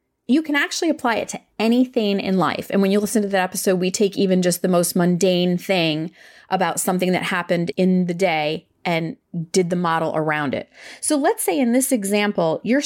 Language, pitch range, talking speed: English, 185-255 Hz, 205 wpm